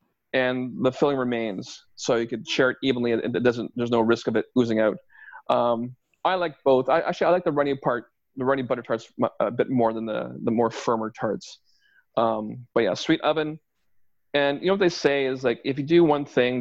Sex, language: male, English